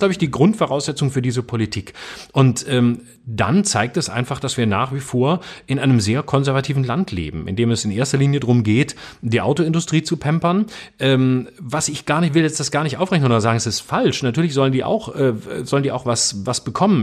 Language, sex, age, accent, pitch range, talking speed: German, male, 40-59, German, 115-150 Hz, 230 wpm